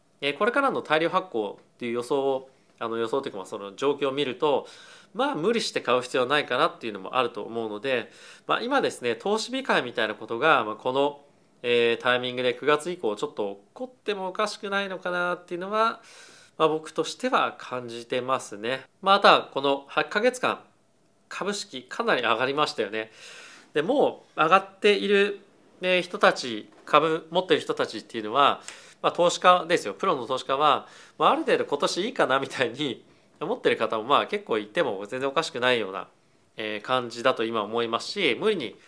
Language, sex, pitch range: Japanese, male, 125-200 Hz